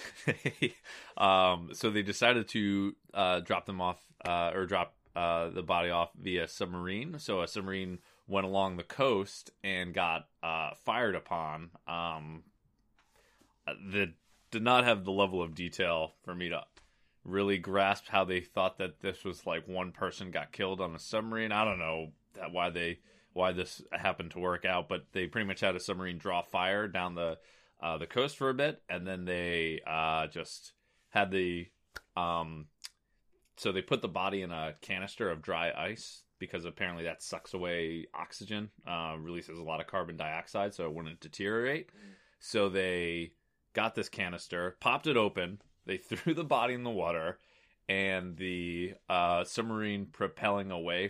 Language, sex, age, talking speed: English, male, 20-39, 170 wpm